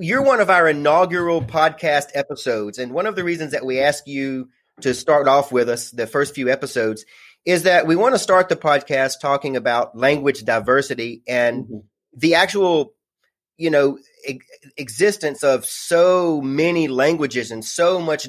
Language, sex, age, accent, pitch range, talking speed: English, male, 30-49, American, 135-175 Hz, 165 wpm